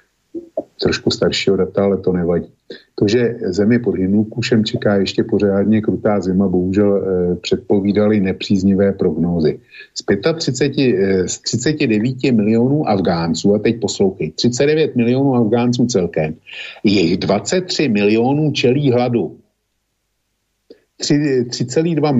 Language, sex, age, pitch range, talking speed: Slovak, male, 50-69, 100-125 Hz, 110 wpm